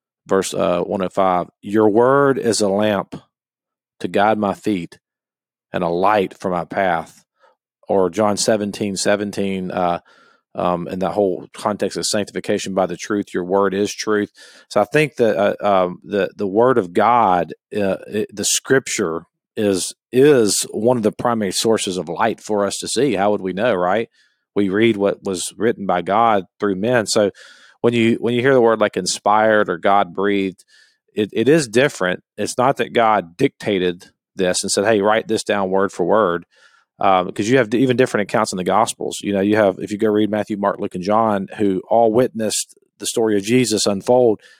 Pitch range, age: 100-115 Hz, 40-59